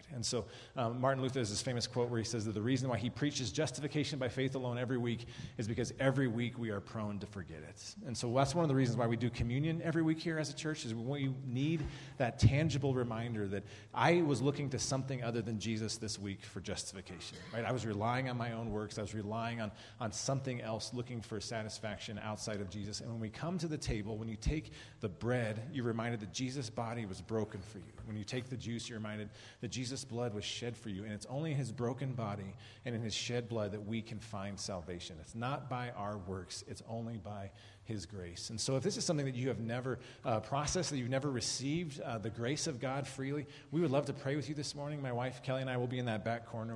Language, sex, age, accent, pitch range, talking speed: English, male, 30-49, American, 110-130 Hz, 250 wpm